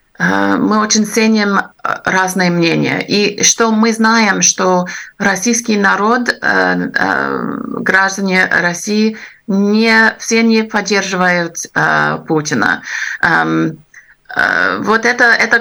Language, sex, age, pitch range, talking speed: Russian, female, 30-49, 160-205 Hz, 85 wpm